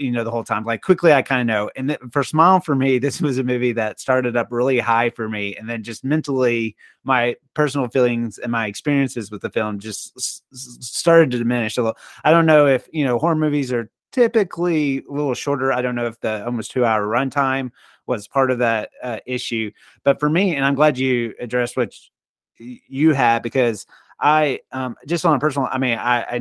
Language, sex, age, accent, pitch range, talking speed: English, male, 30-49, American, 115-140 Hz, 225 wpm